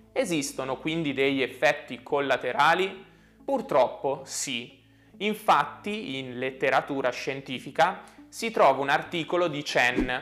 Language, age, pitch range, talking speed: Italian, 20-39, 130-170 Hz, 100 wpm